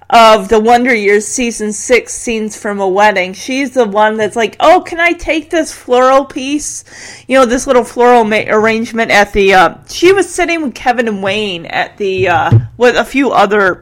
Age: 30-49